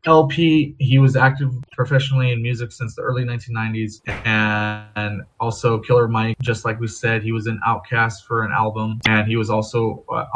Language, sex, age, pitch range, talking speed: English, male, 20-39, 110-135 Hz, 180 wpm